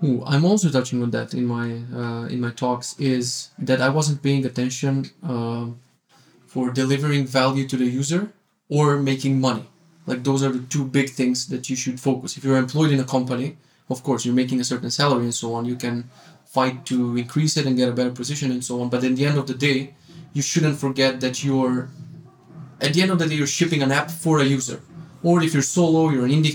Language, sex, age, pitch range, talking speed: English, male, 20-39, 130-155 Hz, 230 wpm